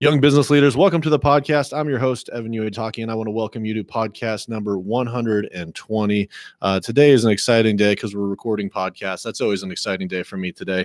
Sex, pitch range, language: male, 95-120 Hz, English